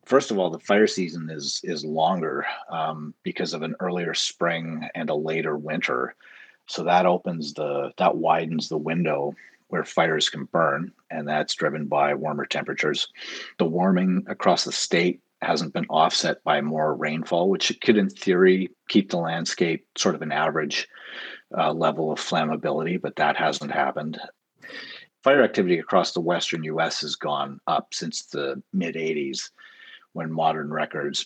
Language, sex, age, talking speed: English, male, 40-59, 160 wpm